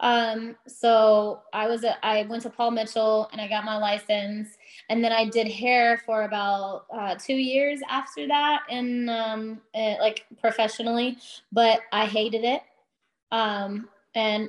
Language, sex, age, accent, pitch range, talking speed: English, female, 20-39, American, 210-250 Hz, 150 wpm